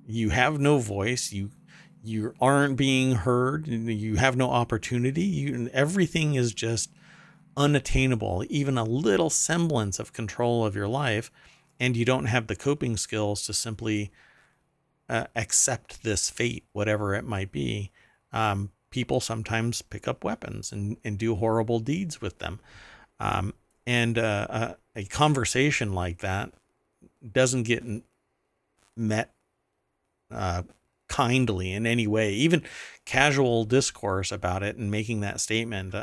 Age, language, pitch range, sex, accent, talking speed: 50-69, English, 100-125 Hz, male, American, 140 wpm